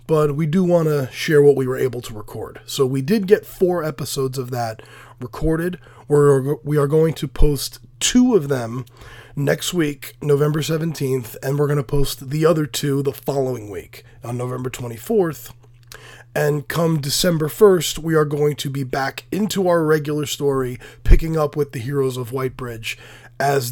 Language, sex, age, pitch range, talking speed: English, male, 20-39, 130-165 Hz, 175 wpm